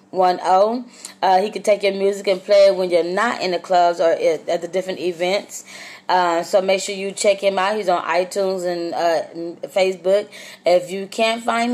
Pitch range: 185-215 Hz